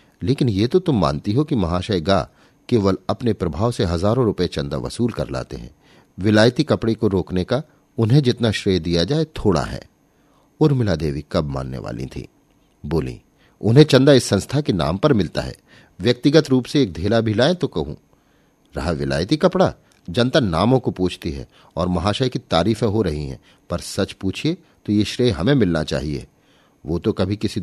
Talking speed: 185 wpm